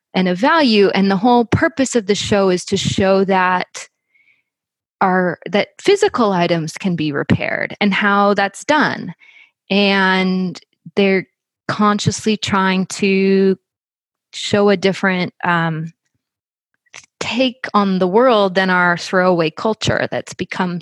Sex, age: female, 20-39